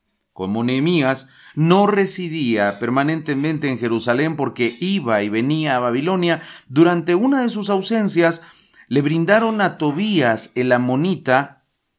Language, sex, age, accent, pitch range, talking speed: English, male, 40-59, Mexican, 120-190 Hz, 120 wpm